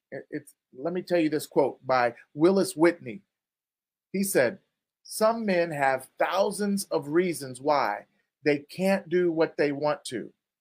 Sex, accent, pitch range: male, American, 160-210 Hz